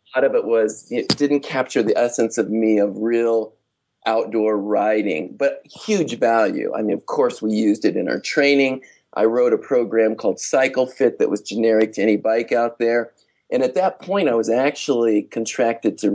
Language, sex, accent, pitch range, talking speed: English, male, American, 110-140 Hz, 190 wpm